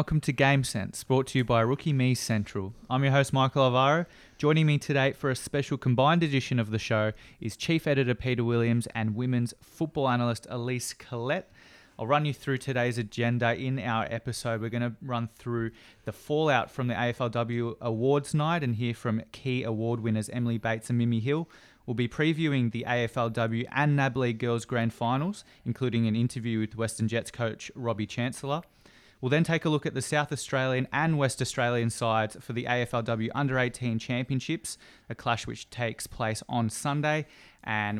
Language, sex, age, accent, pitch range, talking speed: English, male, 20-39, Australian, 115-135 Hz, 185 wpm